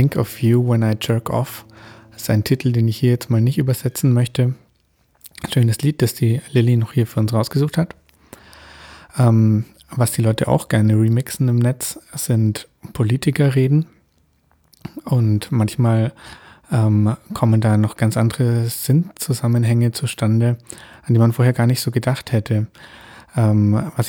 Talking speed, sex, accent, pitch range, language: 155 wpm, male, German, 110-125 Hz, English